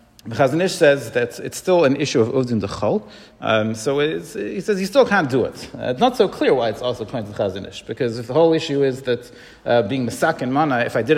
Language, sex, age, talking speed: English, male, 40-59, 250 wpm